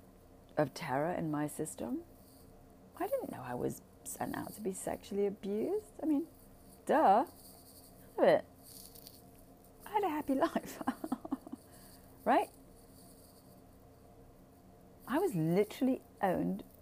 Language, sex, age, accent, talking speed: English, female, 30-49, British, 105 wpm